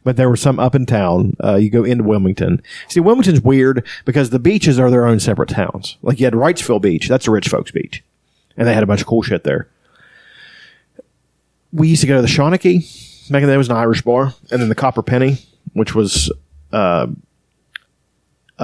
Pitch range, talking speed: 100-130 Hz, 205 wpm